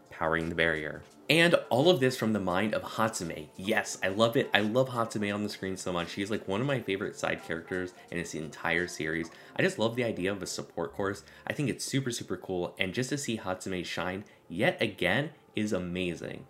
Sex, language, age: male, English, 20-39